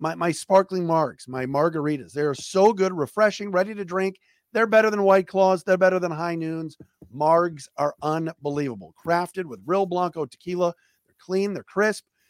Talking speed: 175 wpm